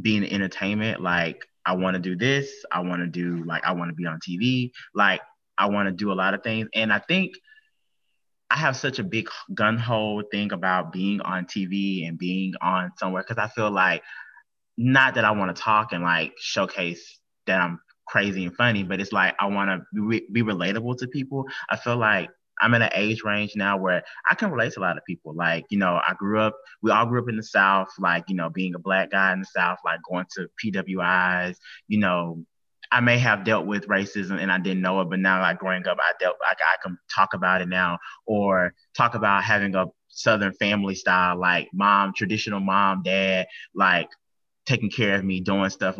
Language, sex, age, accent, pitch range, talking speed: English, male, 20-39, American, 90-110 Hz, 220 wpm